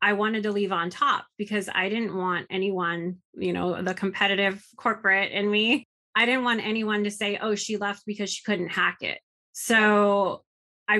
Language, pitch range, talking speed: English, 185-210 Hz, 185 wpm